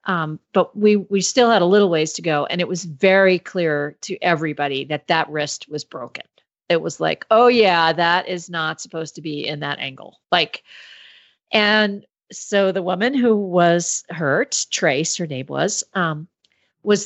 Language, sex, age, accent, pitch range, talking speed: English, female, 40-59, American, 160-205 Hz, 180 wpm